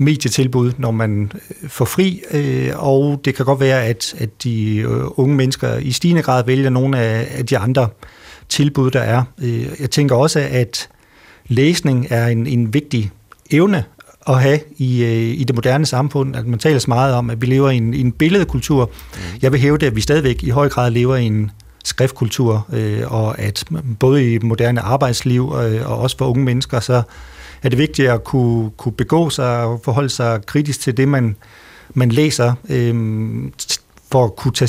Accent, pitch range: native, 115-135 Hz